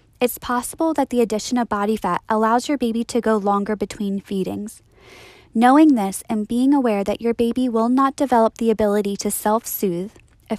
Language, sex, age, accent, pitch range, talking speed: English, female, 10-29, American, 215-260 Hz, 180 wpm